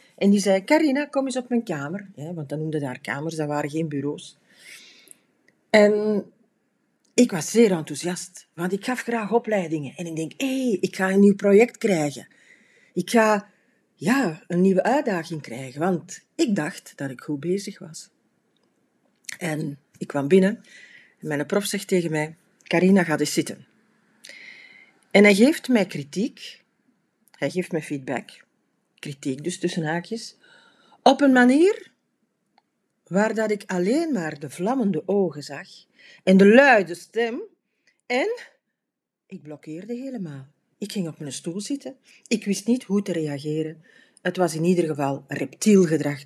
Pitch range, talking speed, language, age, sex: 155-225 Hz, 155 wpm, Dutch, 40-59, female